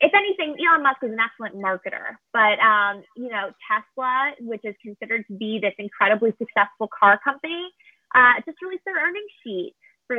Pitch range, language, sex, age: 225-290 Hz, English, female, 20-39